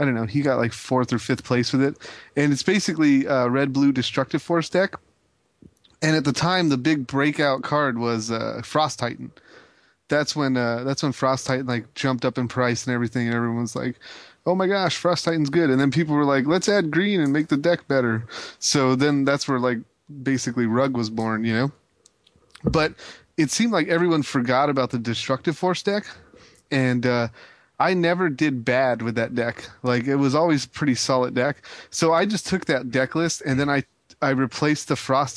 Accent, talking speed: American, 205 wpm